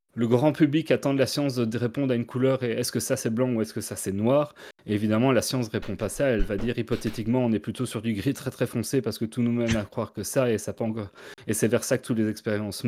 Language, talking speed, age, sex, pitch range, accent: French, 300 wpm, 30-49, male, 105-125 Hz, French